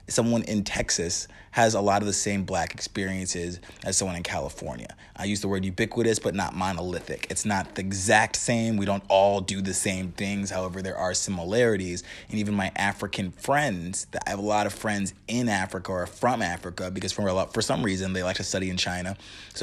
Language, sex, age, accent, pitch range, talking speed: English, male, 20-39, American, 90-100 Hz, 215 wpm